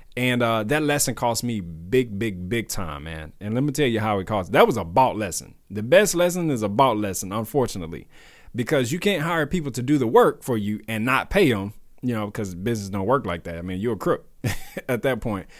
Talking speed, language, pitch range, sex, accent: 240 wpm, English, 110-145 Hz, male, American